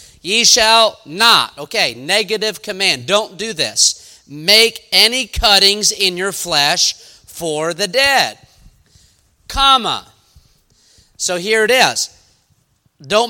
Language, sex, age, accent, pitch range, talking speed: English, male, 40-59, American, 145-200 Hz, 110 wpm